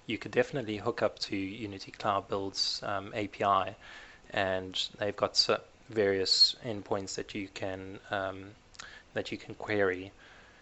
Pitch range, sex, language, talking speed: 95-105 Hz, male, English, 140 wpm